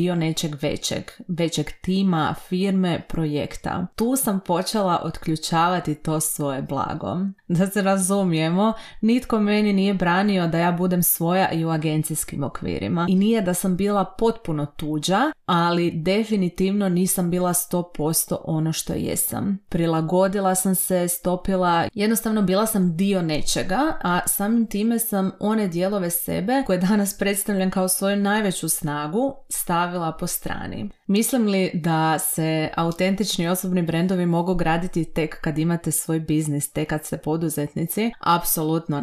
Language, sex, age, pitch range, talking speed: Croatian, female, 30-49, 165-195 Hz, 135 wpm